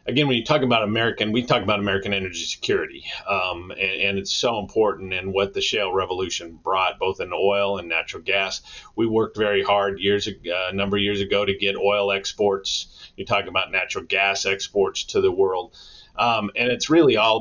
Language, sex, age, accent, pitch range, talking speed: English, male, 40-59, American, 100-165 Hz, 205 wpm